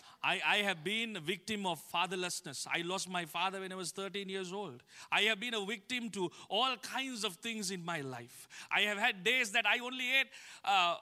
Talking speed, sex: 220 wpm, male